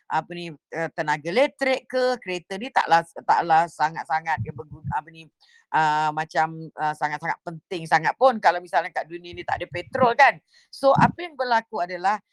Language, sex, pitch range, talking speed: Indonesian, female, 165-230 Hz, 170 wpm